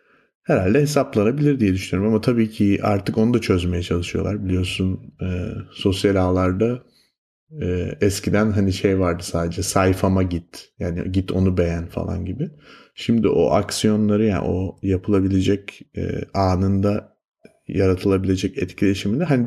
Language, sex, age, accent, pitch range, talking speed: Turkish, male, 30-49, native, 95-110 Hz, 130 wpm